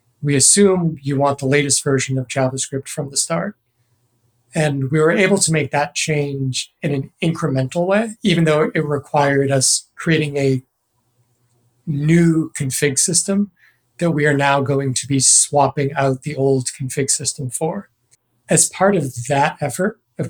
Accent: American